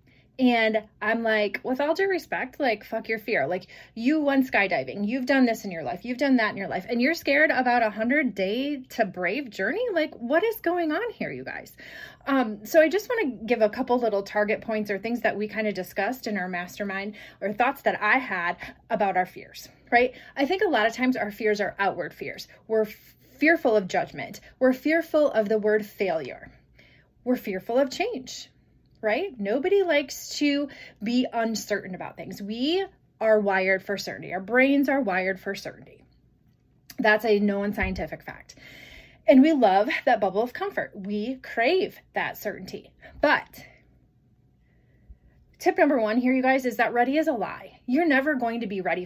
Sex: female